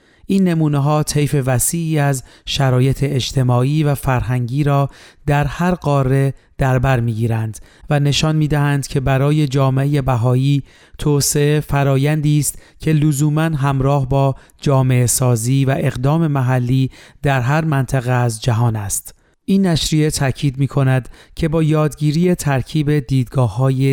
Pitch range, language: 130-150 Hz, Persian